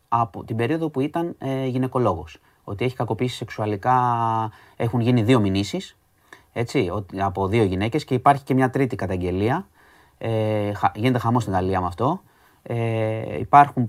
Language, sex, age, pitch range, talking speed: Greek, male, 30-49, 110-135 Hz, 145 wpm